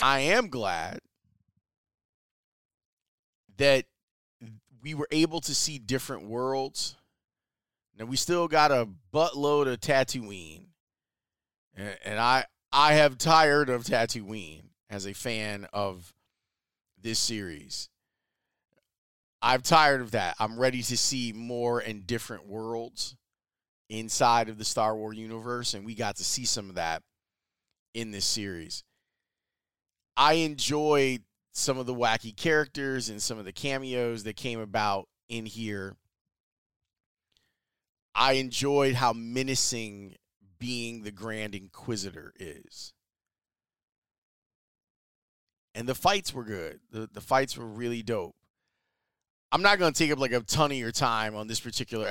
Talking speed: 130 wpm